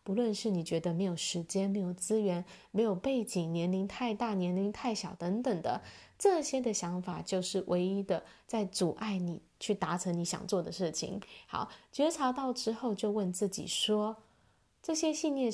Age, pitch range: 20-39, 180-225 Hz